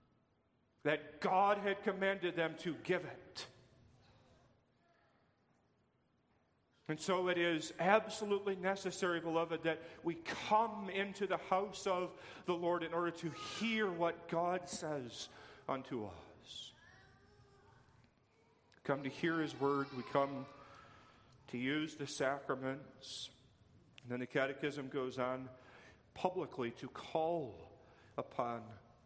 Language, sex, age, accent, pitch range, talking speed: English, male, 40-59, American, 120-160 Hz, 110 wpm